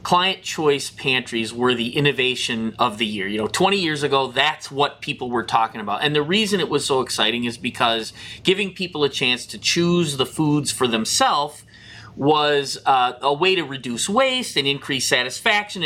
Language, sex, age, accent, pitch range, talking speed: English, male, 30-49, American, 125-205 Hz, 185 wpm